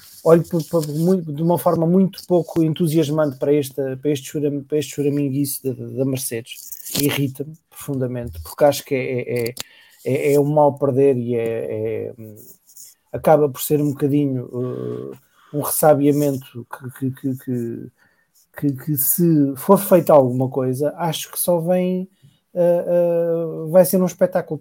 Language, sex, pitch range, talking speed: English, male, 140-180 Hz, 145 wpm